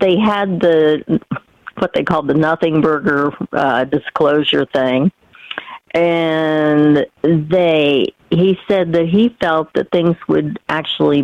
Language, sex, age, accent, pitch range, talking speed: English, female, 50-69, American, 140-185 Hz, 125 wpm